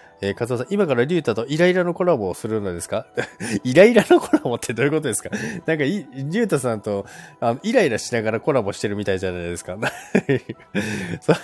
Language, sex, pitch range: Japanese, male, 95-145 Hz